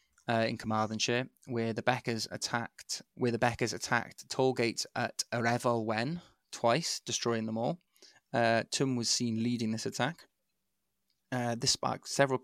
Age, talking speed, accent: 20-39, 145 wpm, British